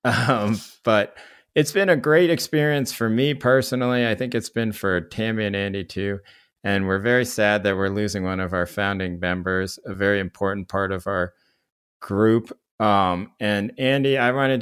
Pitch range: 90-115 Hz